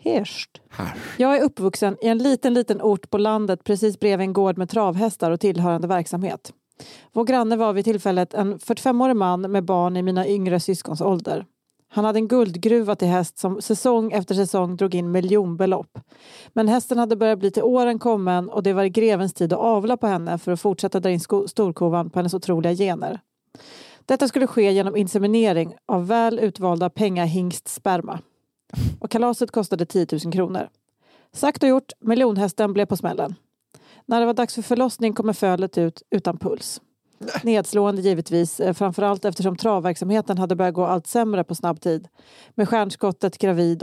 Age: 30-49